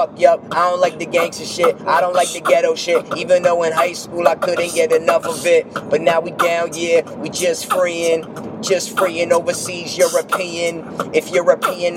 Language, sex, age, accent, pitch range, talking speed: English, male, 20-39, American, 170-200 Hz, 195 wpm